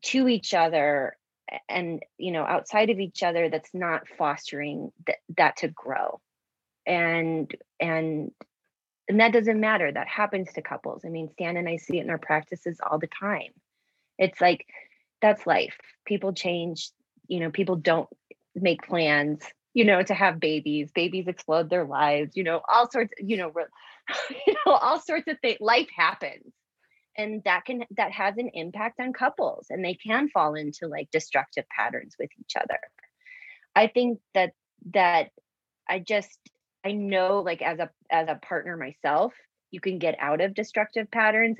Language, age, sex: English, 30-49, female